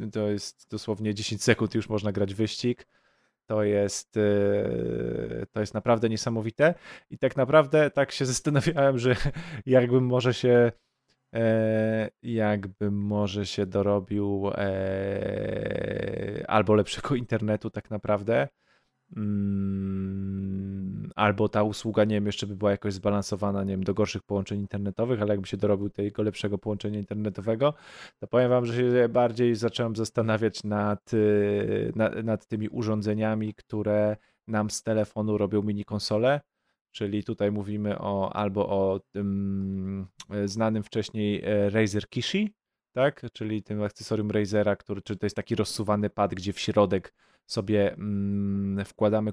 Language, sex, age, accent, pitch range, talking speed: Polish, male, 20-39, native, 100-115 Hz, 125 wpm